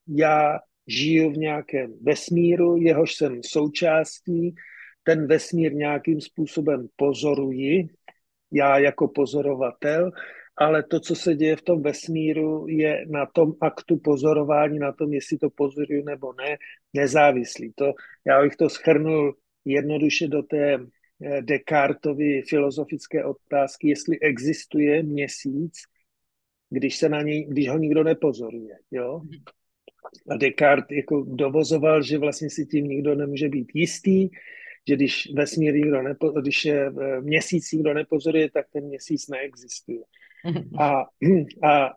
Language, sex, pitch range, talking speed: Slovak, male, 140-160 Hz, 125 wpm